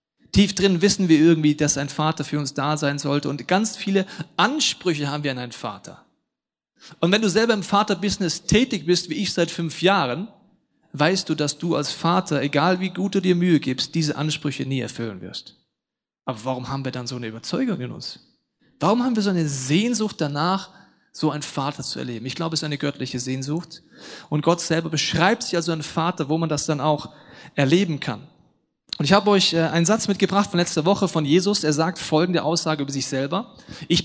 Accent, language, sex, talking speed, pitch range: German, German, male, 205 wpm, 150-195 Hz